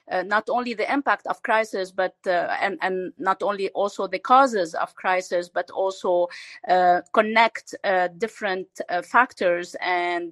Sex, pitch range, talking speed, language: female, 180-230 Hz, 155 wpm, English